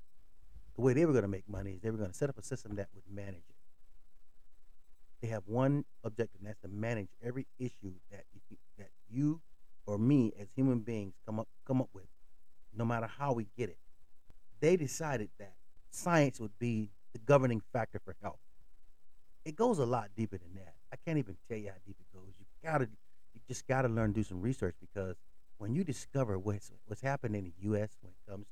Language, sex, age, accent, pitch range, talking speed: English, male, 30-49, American, 95-125 Hz, 215 wpm